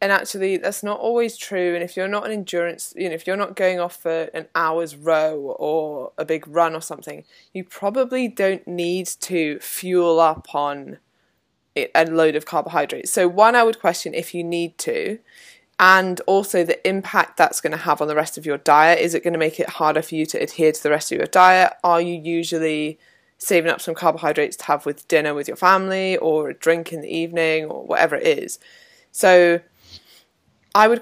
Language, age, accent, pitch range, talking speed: English, 20-39, British, 155-190 Hz, 210 wpm